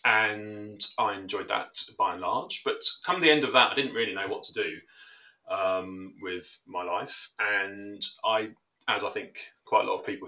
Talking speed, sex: 200 wpm, male